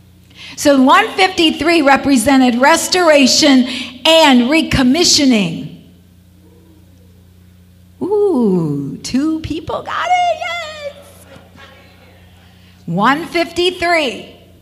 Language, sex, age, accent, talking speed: English, female, 50-69, American, 55 wpm